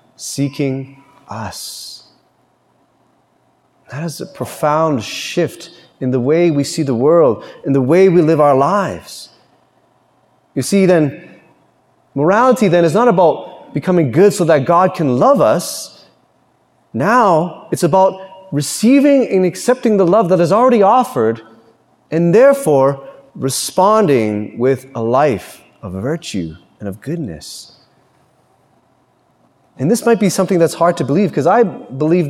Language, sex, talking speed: English, male, 135 wpm